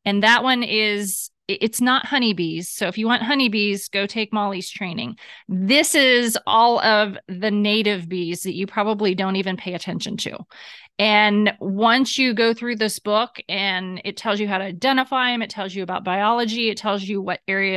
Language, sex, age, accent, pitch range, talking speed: English, female, 30-49, American, 195-245 Hz, 190 wpm